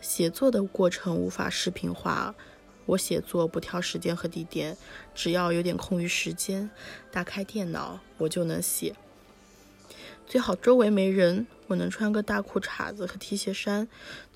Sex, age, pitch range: female, 20-39, 175-210 Hz